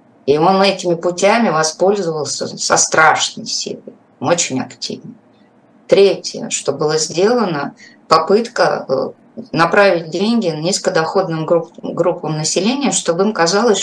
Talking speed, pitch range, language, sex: 110 wpm, 165-220 Hz, Russian, female